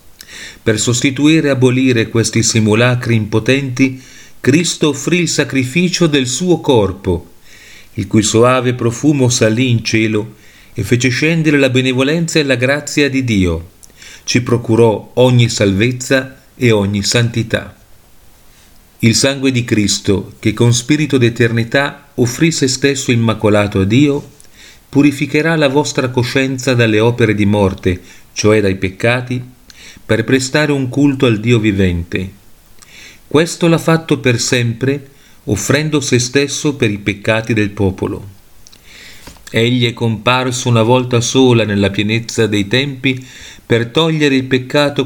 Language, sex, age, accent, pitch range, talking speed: Italian, male, 40-59, native, 105-135 Hz, 130 wpm